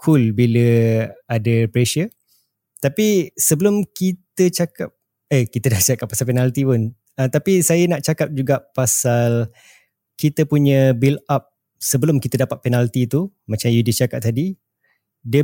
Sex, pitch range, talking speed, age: male, 120-145 Hz, 140 wpm, 20-39